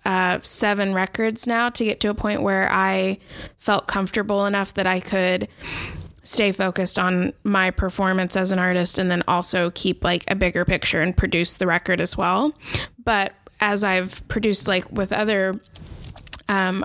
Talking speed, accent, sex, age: 165 wpm, American, female, 20-39